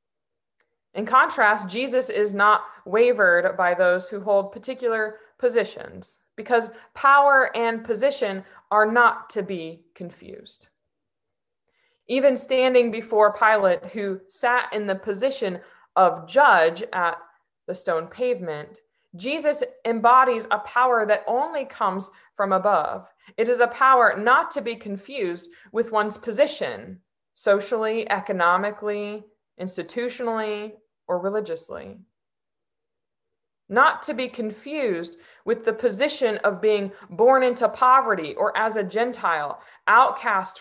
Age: 20-39